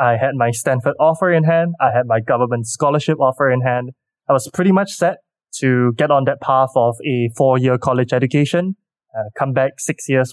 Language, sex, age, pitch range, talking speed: English, male, 20-39, 120-160 Hz, 205 wpm